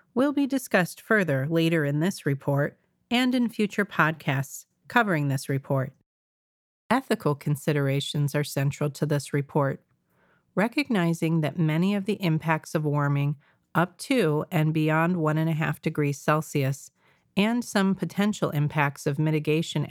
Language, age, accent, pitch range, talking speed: English, 40-59, American, 145-180 Hz, 130 wpm